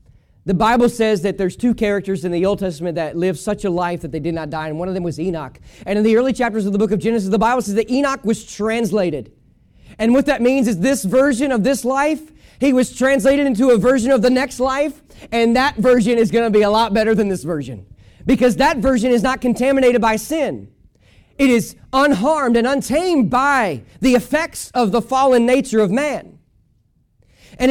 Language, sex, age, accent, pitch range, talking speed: English, male, 40-59, American, 205-265 Hz, 215 wpm